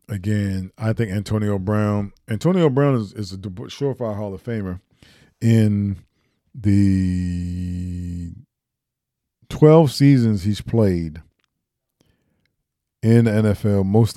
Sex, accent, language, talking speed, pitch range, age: male, American, English, 100 wpm, 90-120 Hz, 40-59